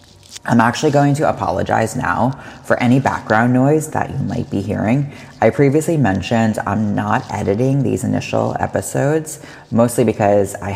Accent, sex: American, female